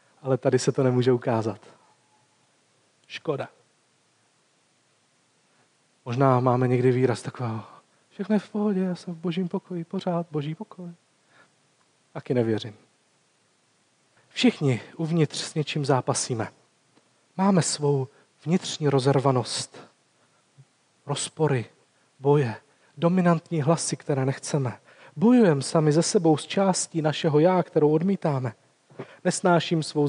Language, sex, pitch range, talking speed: Czech, male, 140-180 Hz, 110 wpm